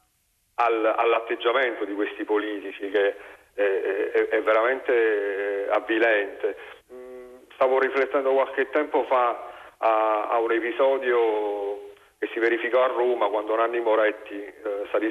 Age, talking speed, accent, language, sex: 50-69, 115 wpm, native, Italian, male